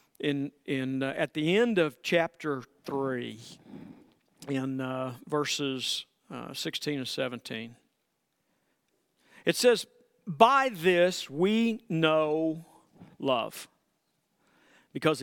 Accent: American